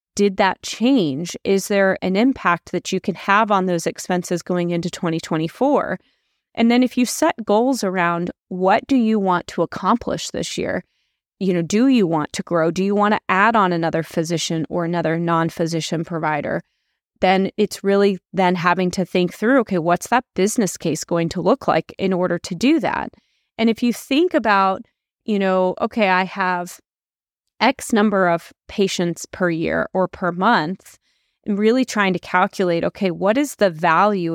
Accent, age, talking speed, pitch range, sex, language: American, 30-49, 180 wpm, 175-210 Hz, female, English